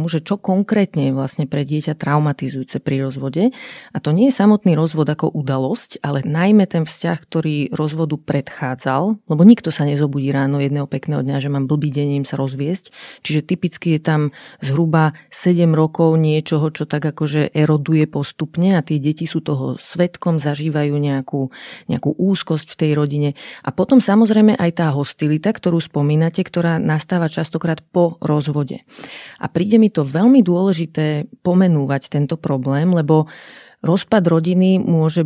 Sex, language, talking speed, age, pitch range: female, Slovak, 155 wpm, 30-49, 150-175 Hz